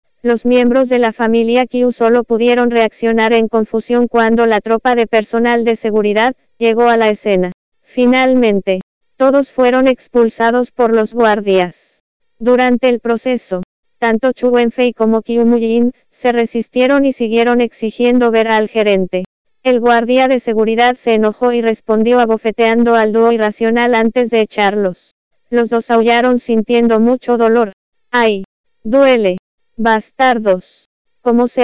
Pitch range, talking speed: 225-245 Hz, 135 wpm